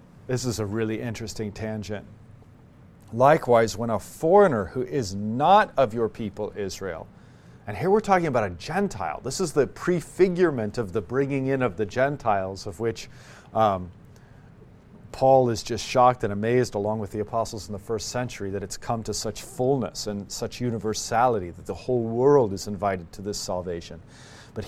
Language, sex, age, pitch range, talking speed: English, male, 40-59, 105-135 Hz, 175 wpm